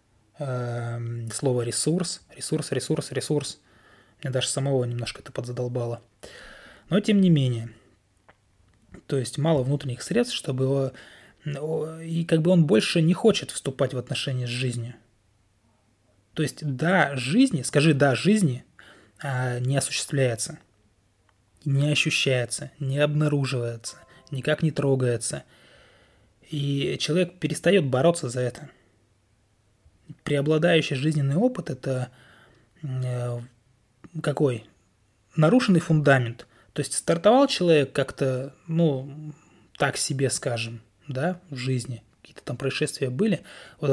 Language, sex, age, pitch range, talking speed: Russian, male, 20-39, 120-155 Hz, 110 wpm